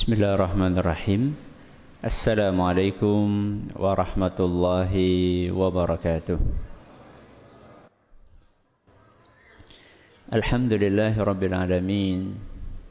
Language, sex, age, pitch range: Malay, male, 50-69, 95-105 Hz